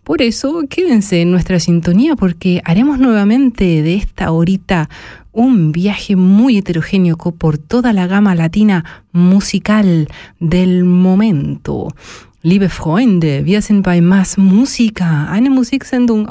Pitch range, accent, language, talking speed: 180-230 Hz, German, German, 120 wpm